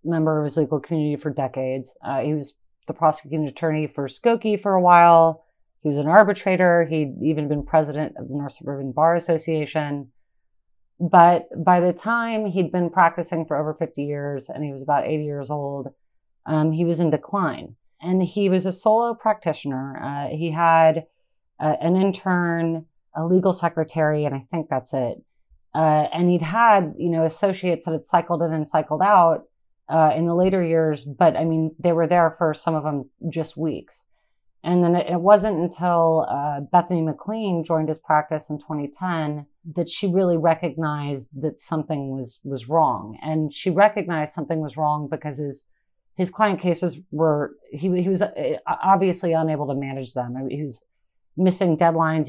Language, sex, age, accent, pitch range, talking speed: English, female, 30-49, American, 145-175 Hz, 175 wpm